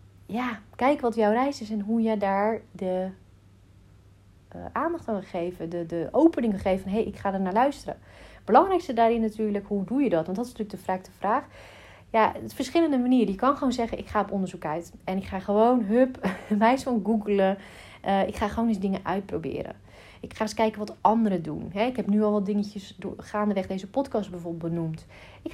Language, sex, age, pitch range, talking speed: Dutch, female, 40-59, 180-235 Hz, 210 wpm